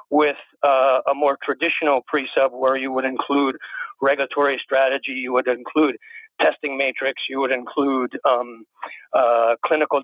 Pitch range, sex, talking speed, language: 130-160 Hz, male, 135 wpm, English